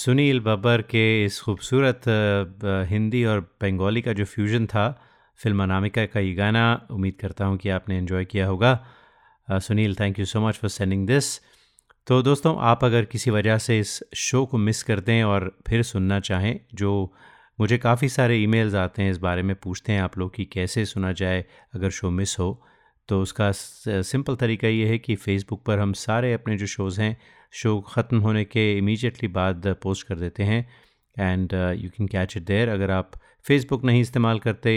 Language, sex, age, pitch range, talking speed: Hindi, male, 30-49, 95-115 Hz, 190 wpm